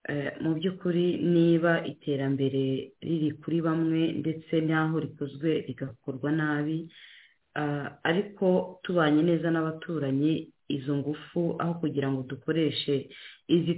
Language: English